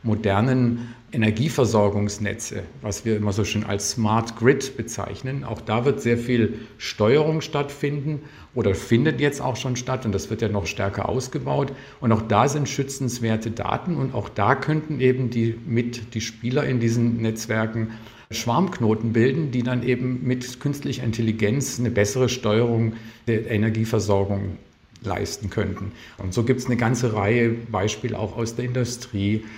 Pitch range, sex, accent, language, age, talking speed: 110-130 Hz, male, German, German, 50-69, 155 wpm